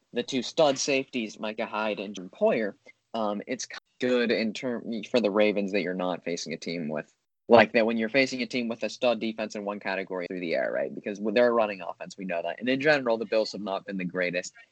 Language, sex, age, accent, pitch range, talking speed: English, male, 20-39, American, 100-125 Hz, 250 wpm